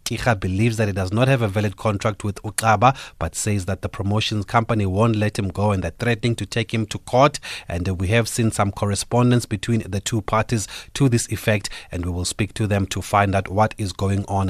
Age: 30-49